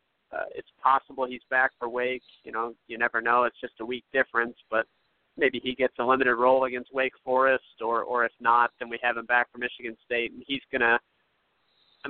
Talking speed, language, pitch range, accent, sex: 220 wpm, English, 120-135 Hz, American, male